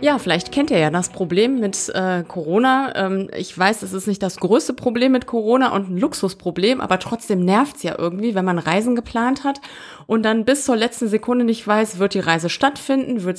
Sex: female